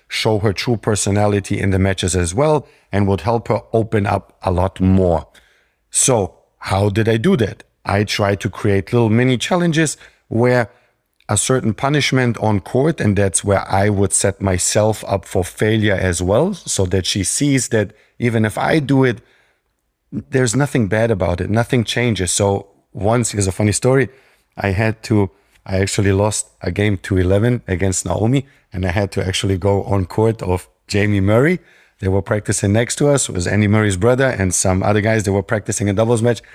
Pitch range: 95-120 Hz